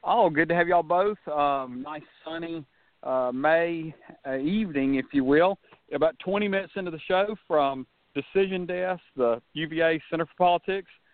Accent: American